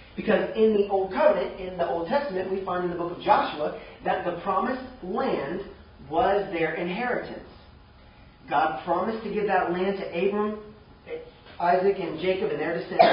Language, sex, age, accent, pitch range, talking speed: English, male, 40-59, American, 160-200 Hz, 170 wpm